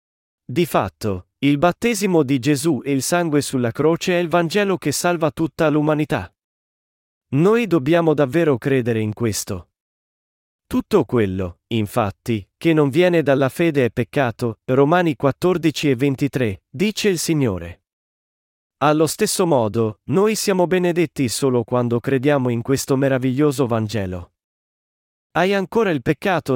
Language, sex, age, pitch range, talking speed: Italian, male, 40-59, 125-160 Hz, 130 wpm